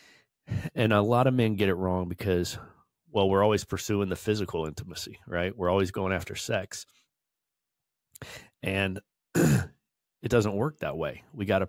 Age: 30-49